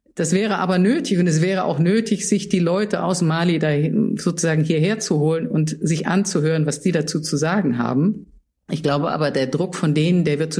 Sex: female